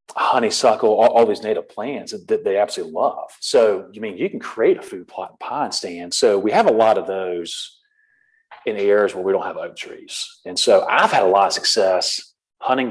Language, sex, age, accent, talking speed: English, male, 40-59, American, 230 wpm